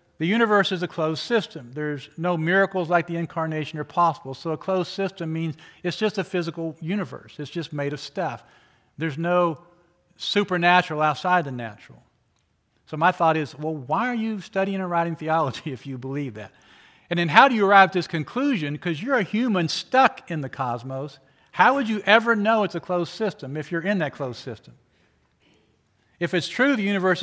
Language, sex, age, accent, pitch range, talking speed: English, male, 50-69, American, 145-180 Hz, 195 wpm